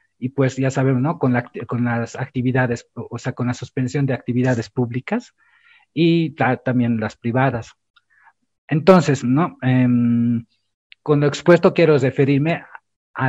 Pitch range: 120-145 Hz